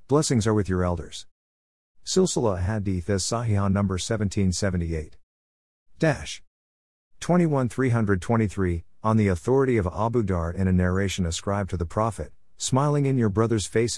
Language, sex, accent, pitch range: English, male, American, 85-110 Hz